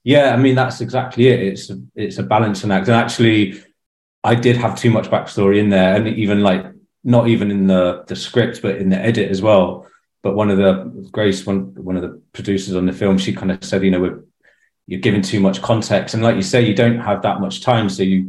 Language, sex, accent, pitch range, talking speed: English, male, British, 95-115 Hz, 245 wpm